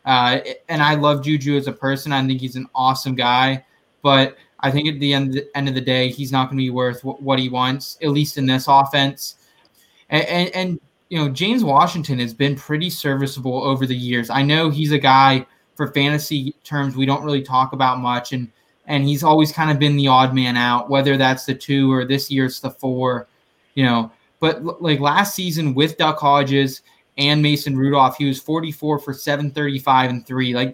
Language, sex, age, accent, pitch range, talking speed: English, male, 20-39, American, 135-155 Hz, 210 wpm